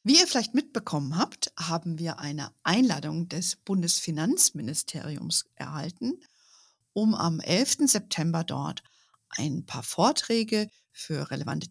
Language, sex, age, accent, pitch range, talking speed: German, female, 50-69, German, 160-195 Hz, 115 wpm